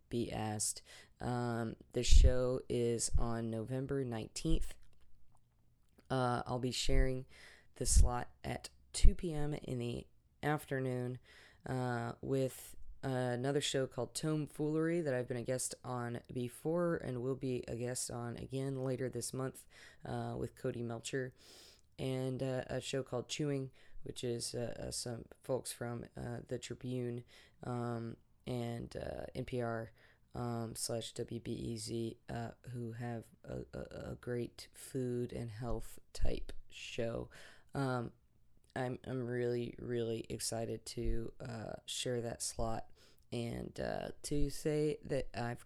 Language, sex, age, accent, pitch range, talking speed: English, female, 20-39, American, 115-130 Hz, 135 wpm